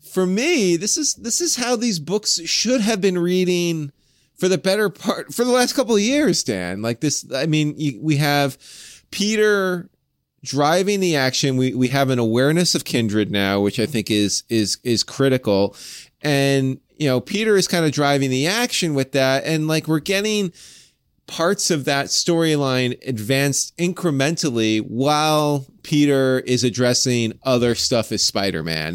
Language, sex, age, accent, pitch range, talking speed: English, male, 30-49, American, 120-165 Hz, 165 wpm